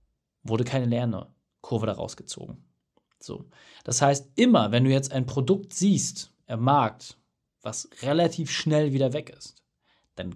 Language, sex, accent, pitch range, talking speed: German, male, German, 120-175 Hz, 140 wpm